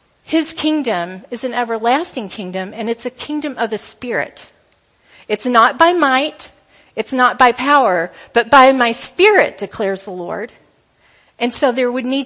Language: English